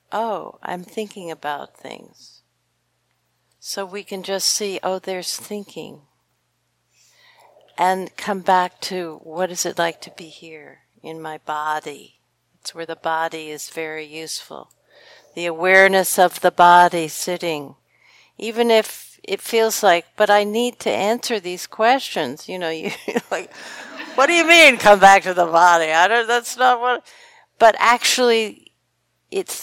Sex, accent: female, American